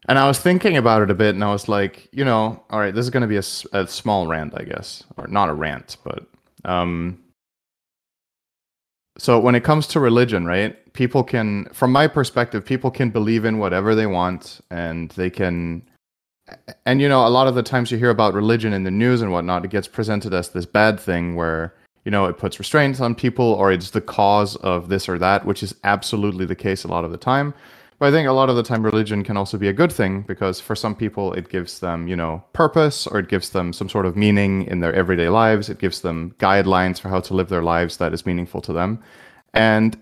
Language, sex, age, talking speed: English, male, 30-49, 235 wpm